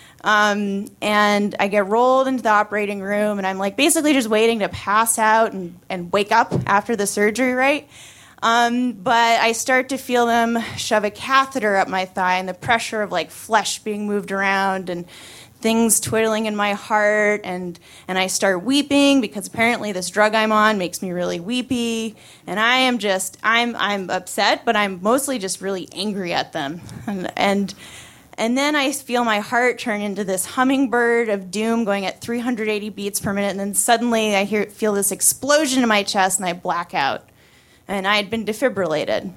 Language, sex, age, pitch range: English, female, 20-39, 195-245 Hz